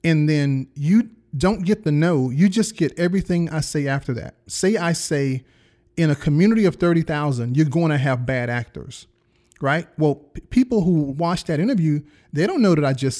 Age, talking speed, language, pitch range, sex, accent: 40-59, 200 wpm, English, 130-170 Hz, male, American